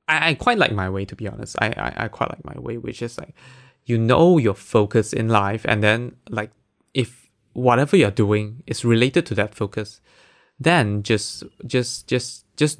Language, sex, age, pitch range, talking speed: English, male, 20-39, 105-135 Hz, 195 wpm